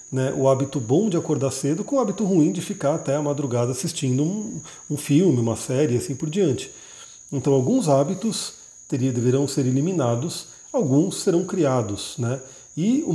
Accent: Brazilian